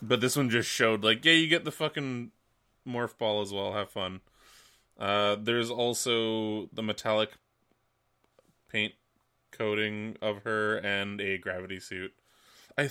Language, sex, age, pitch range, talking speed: English, male, 20-39, 105-130 Hz, 145 wpm